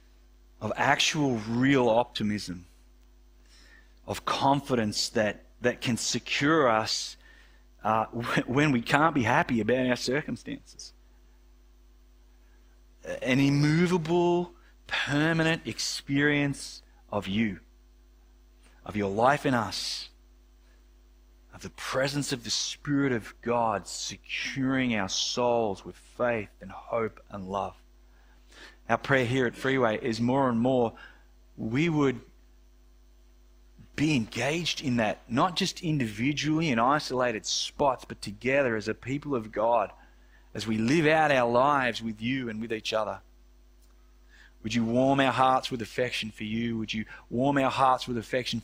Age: 30-49